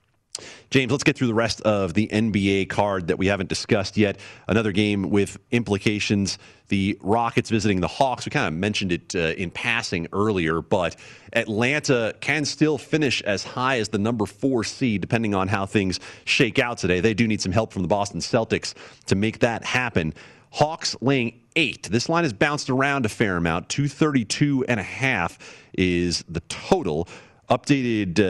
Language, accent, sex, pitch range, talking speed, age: English, American, male, 95-120 Hz, 180 wpm, 40-59